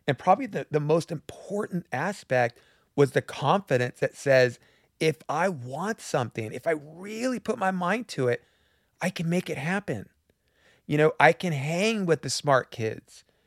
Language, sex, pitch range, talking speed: English, male, 120-170 Hz, 170 wpm